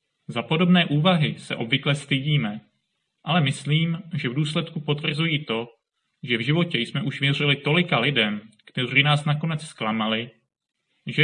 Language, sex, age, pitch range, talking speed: Czech, male, 30-49, 125-160 Hz, 140 wpm